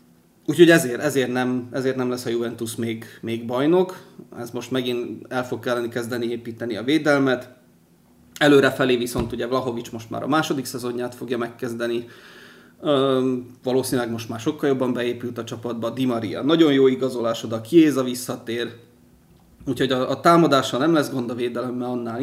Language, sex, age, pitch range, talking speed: Hungarian, male, 30-49, 120-135 Hz, 160 wpm